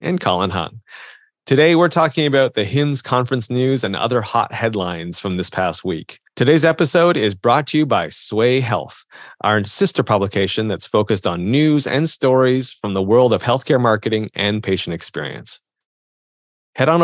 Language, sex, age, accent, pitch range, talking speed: English, male, 30-49, American, 105-135 Hz, 170 wpm